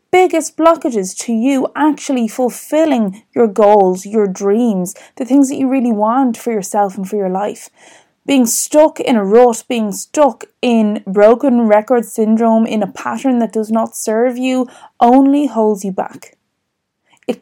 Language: English